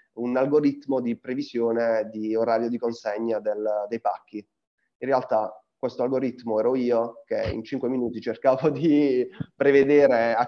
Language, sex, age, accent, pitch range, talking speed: Italian, male, 20-39, native, 110-130 Hz, 145 wpm